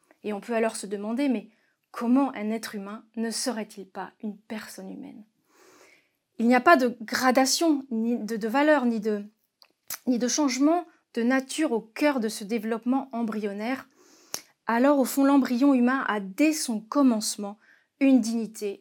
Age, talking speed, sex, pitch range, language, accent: 30-49, 170 wpm, female, 220-280 Hz, French, French